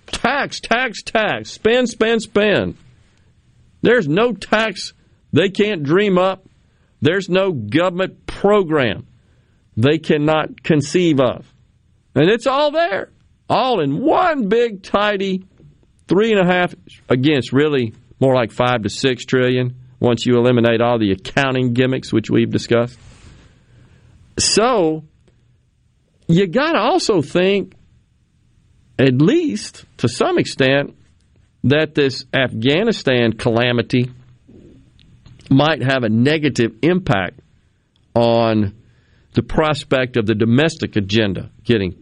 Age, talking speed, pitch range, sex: 40-59, 115 wpm, 115-165 Hz, male